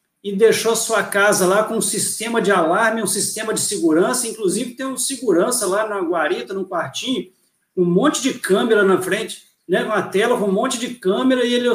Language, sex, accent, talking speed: Portuguese, male, Brazilian, 200 wpm